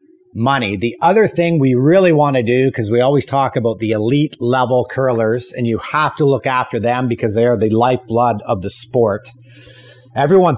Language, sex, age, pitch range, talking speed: English, male, 30-49, 120-150 Hz, 195 wpm